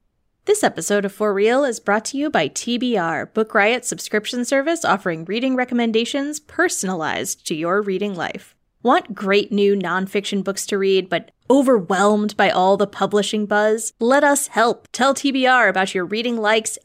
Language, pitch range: English, 205-275 Hz